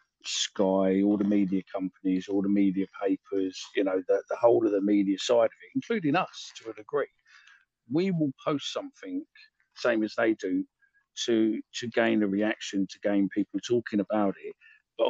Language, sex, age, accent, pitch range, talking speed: English, male, 50-69, British, 95-115 Hz, 180 wpm